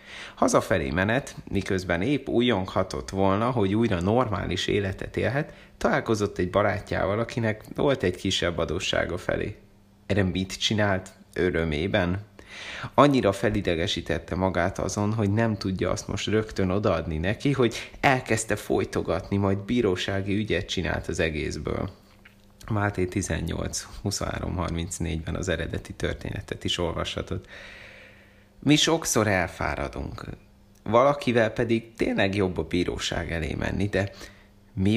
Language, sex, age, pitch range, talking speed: Hungarian, male, 30-49, 95-115 Hz, 115 wpm